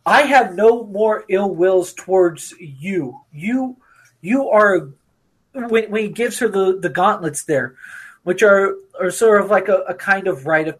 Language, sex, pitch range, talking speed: English, male, 165-220 Hz, 180 wpm